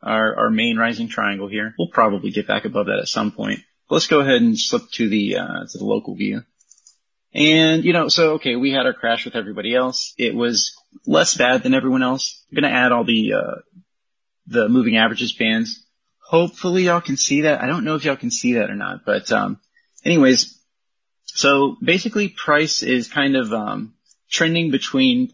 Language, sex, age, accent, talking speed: English, male, 30-49, American, 195 wpm